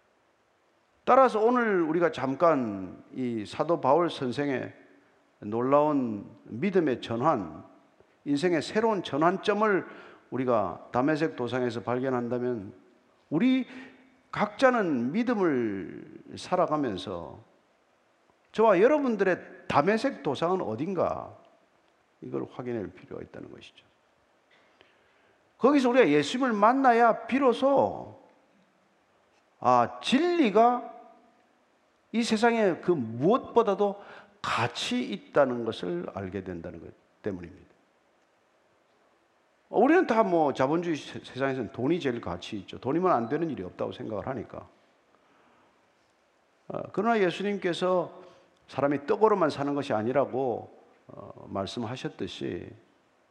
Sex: male